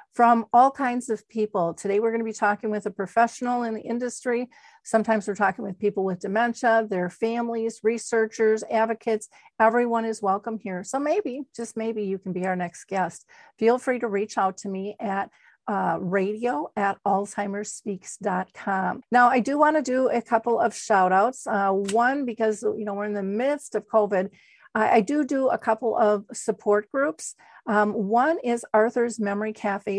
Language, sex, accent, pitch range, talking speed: English, female, American, 205-235 Hz, 180 wpm